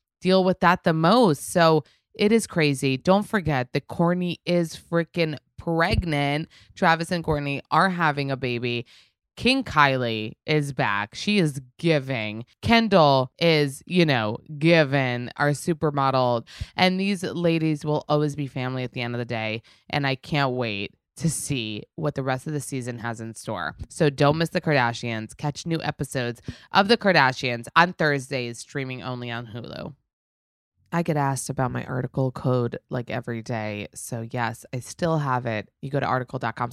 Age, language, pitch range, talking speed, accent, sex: 20-39, English, 120-155 Hz, 165 wpm, American, female